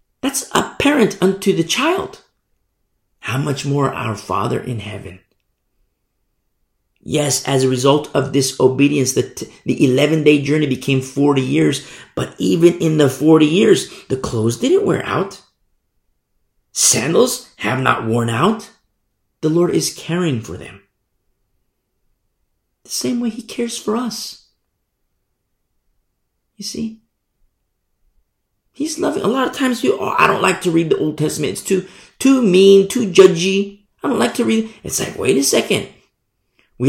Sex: male